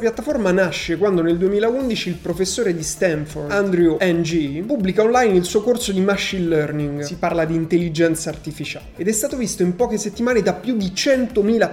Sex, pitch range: male, 170-225 Hz